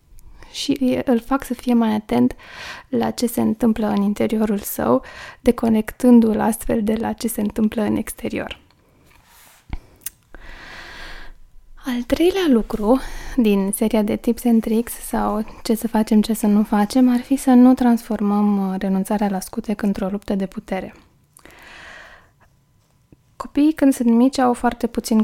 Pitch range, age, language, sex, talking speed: 205-240 Hz, 20-39, Romanian, female, 140 wpm